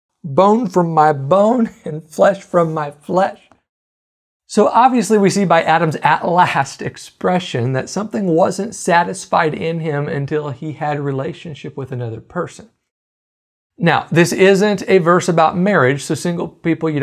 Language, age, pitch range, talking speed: English, 40-59, 135-180 Hz, 150 wpm